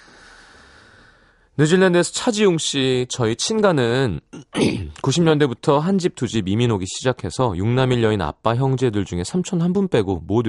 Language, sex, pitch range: Korean, male, 95-140 Hz